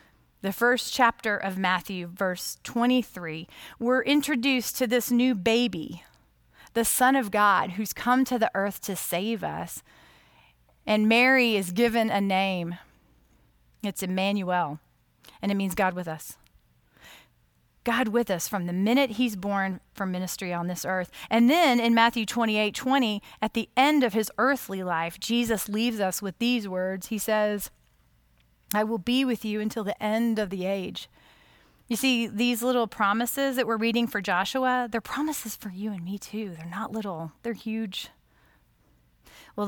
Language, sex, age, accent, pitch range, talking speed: English, female, 30-49, American, 185-235 Hz, 160 wpm